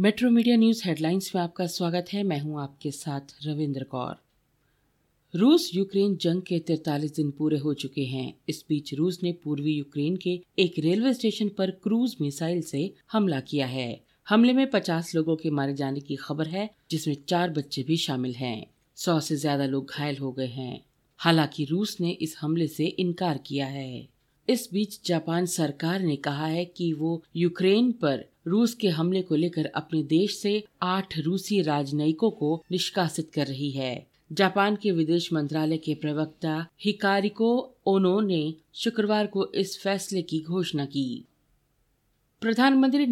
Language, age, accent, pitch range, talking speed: Hindi, 40-59, native, 150-195 Hz, 165 wpm